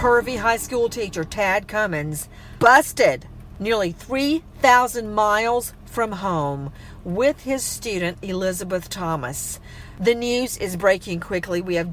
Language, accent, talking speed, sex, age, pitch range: English, American, 120 wpm, female, 50-69, 170-225 Hz